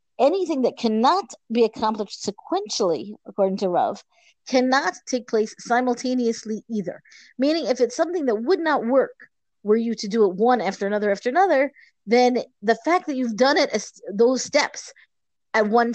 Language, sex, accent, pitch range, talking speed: English, female, American, 205-260 Hz, 160 wpm